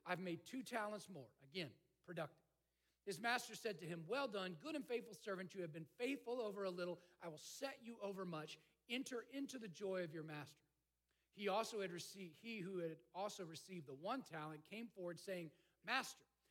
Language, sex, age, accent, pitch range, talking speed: English, male, 40-59, American, 155-220 Hz, 195 wpm